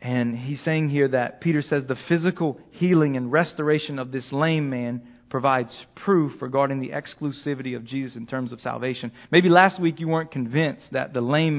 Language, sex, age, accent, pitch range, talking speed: English, male, 40-59, American, 120-160 Hz, 185 wpm